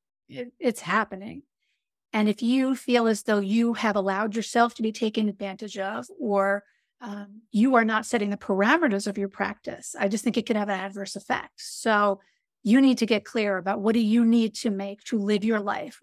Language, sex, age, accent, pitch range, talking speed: English, female, 40-59, American, 210-255 Hz, 200 wpm